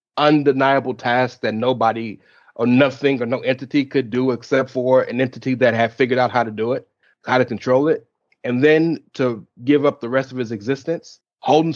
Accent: American